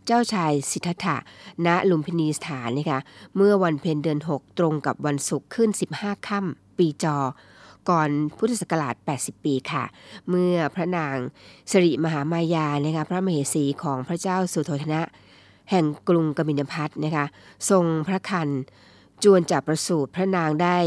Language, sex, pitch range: Thai, female, 145-180 Hz